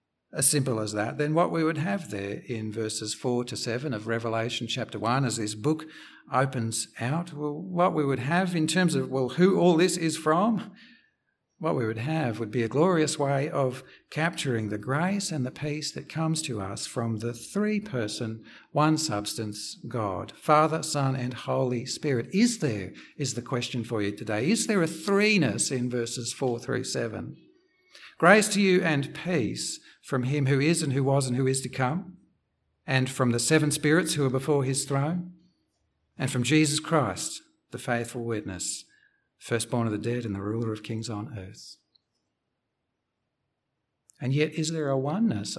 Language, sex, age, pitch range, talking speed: English, male, 60-79, 115-155 Hz, 180 wpm